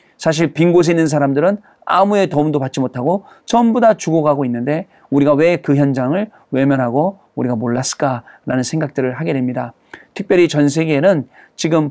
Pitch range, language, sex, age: 135-185 Hz, Korean, male, 40-59